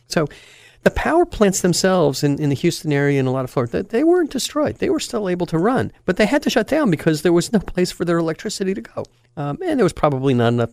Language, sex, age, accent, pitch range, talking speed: English, male, 50-69, American, 120-180 Hz, 265 wpm